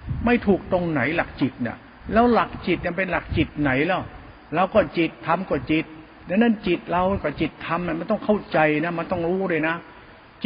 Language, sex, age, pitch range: Thai, male, 60-79, 145-185 Hz